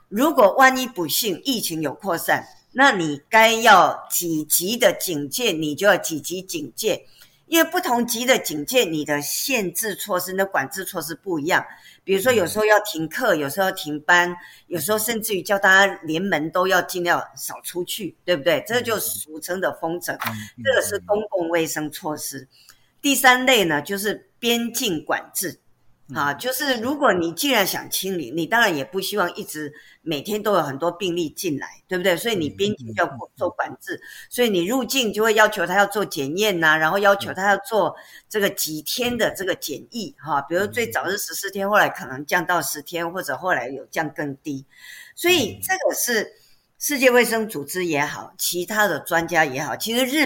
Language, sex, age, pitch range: Japanese, female, 50-69, 160-225 Hz